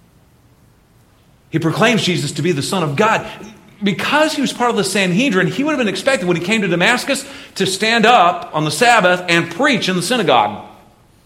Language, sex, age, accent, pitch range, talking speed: English, male, 40-59, American, 170-220 Hz, 195 wpm